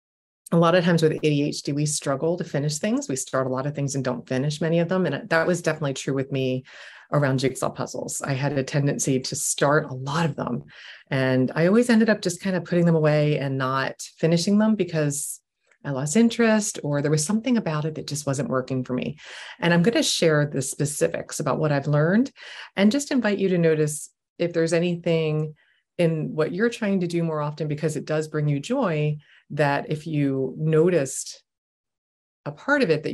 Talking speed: 210 wpm